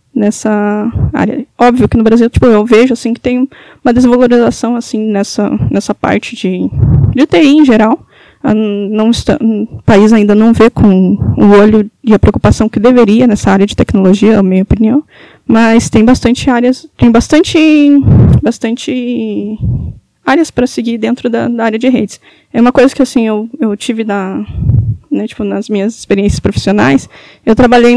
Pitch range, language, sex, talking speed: 220-255 Hz, Portuguese, female, 170 wpm